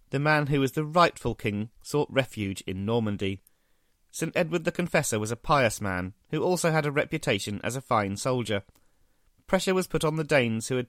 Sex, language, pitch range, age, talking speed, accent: male, English, 105-150 Hz, 40-59, 200 wpm, British